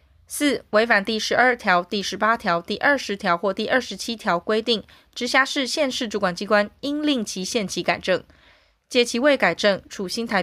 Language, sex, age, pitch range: Chinese, female, 20-39, 185-245 Hz